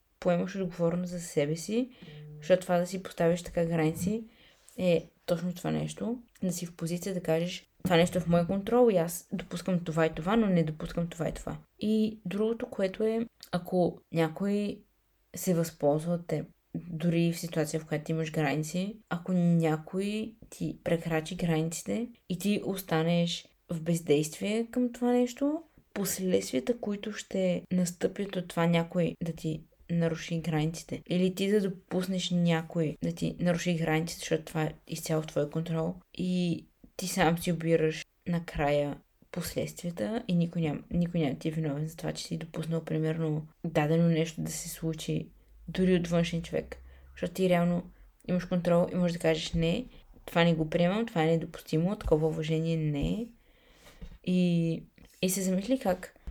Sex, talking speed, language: female, 160 wpm, Bulgarian